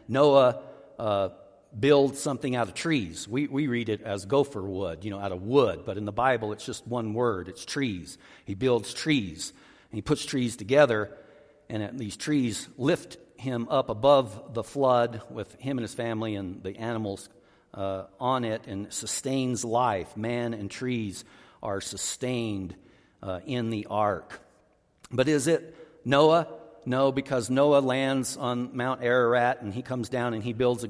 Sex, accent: male, American